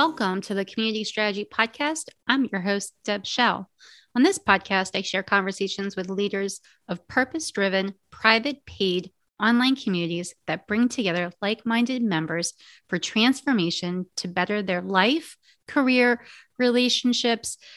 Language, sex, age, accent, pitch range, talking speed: English, female, 30-49, American, 195-245 Hz, 130 wpm